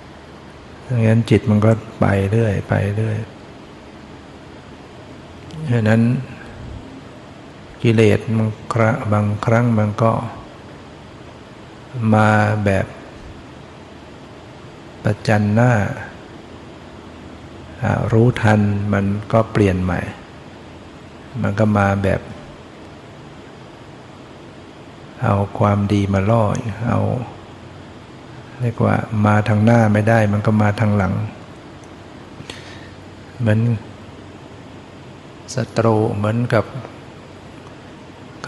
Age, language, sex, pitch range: 60-79, Thai, male, 105-115 Hz